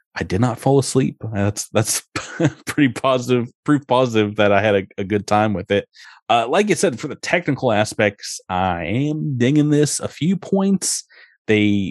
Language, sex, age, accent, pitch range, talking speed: English, male, 30-49, American, 100-135 Hz, 180 wpm